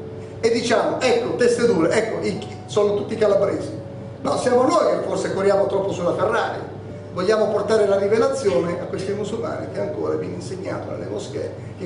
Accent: native